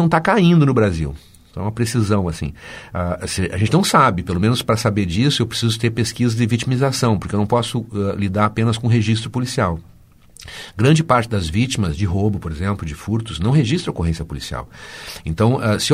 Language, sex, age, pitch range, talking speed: Portuguese, male, 50-69, 95-135 Hz, 205 wpm